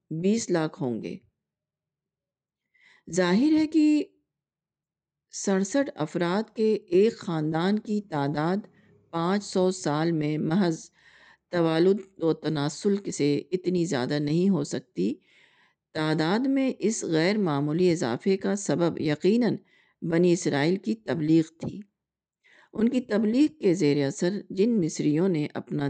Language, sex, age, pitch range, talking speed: Urdu, female, 50-69, 155-205 Hz, 125 wpm